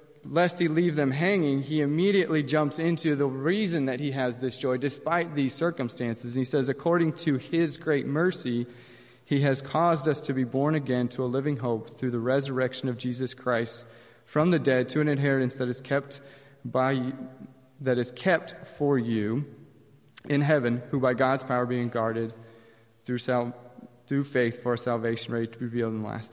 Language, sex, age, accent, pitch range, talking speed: English, male, 30-49, American, 130-165 Hz, 185 wpm